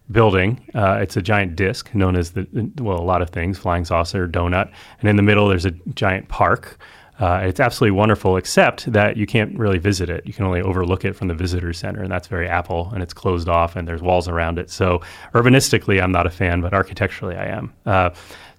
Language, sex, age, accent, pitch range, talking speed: English, male, 30-49, American, 90-105 Hz, 225 wpm